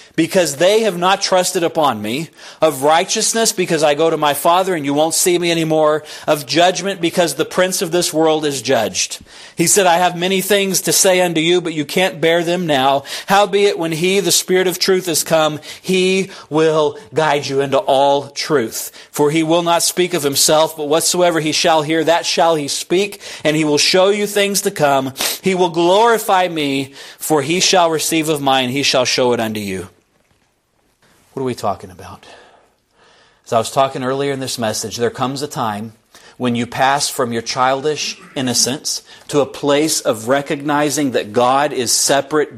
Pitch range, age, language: 140-180 Hz, 40-59, English